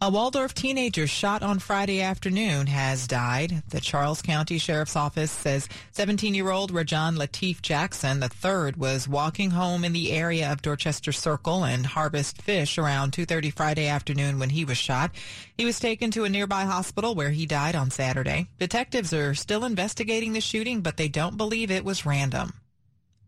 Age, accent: 30-49, American